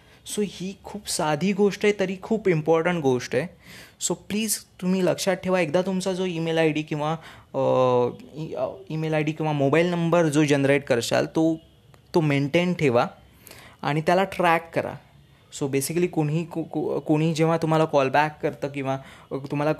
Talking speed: 160 wpm